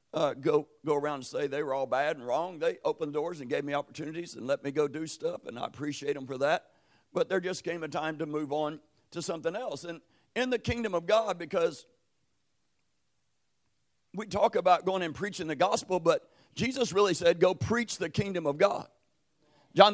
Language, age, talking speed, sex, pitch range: English, 50-69, 210 wpm, male, 165-215 Hz